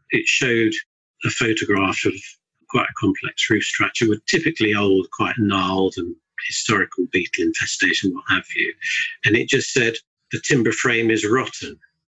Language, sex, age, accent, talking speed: English, male, 50-69, British, 155 wpm